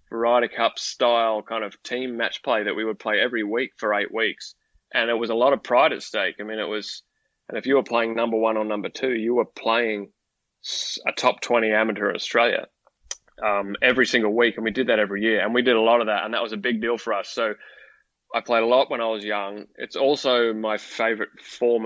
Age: 20-39